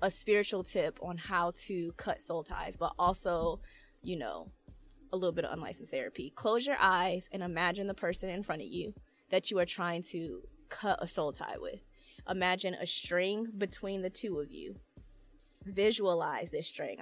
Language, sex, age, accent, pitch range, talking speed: English, female, 20-39, American, 180-235 Hz, 180 wpm